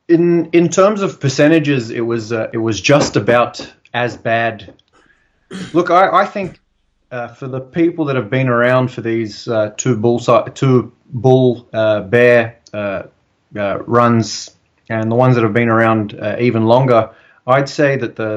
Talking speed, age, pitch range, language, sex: 170 wpm, 30-49, 110-125 Hz, English, male